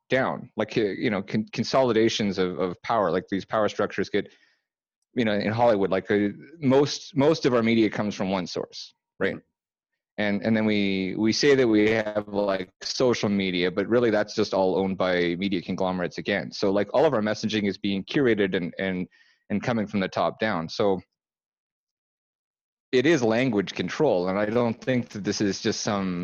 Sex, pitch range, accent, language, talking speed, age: male, 100-120 Hz, American, English, 185 wpm, 30-49